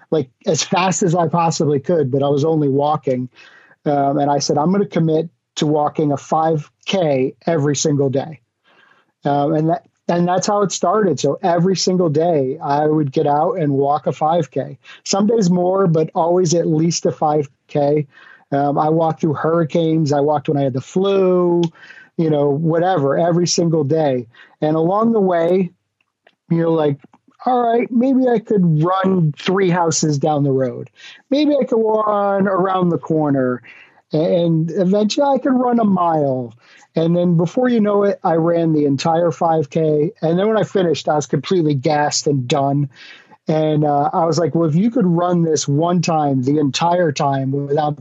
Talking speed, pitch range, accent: 180 wpm, 145-180 Hz, American